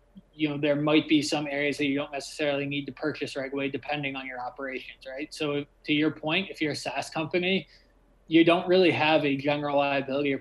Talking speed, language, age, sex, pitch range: 220 wpm, English, 20-39, male, 140-150 Hz